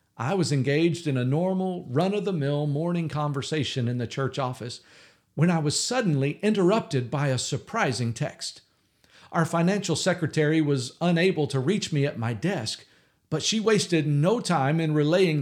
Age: 50-69